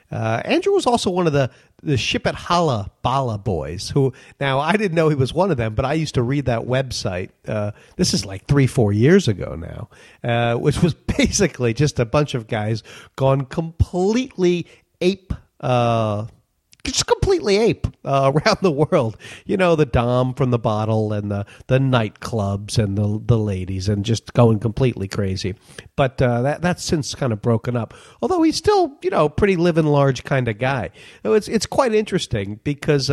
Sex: male